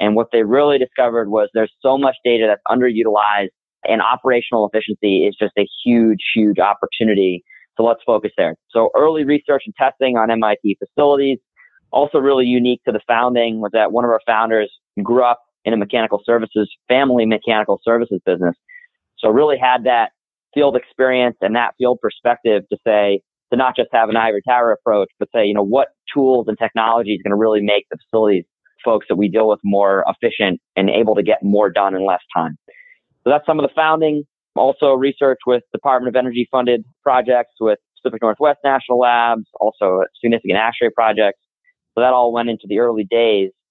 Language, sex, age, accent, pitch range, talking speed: English, male, 30-49, American, 110-130 Hz, 190 wpm